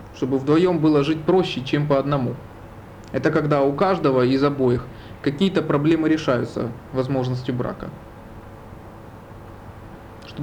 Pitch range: 110-155 Hz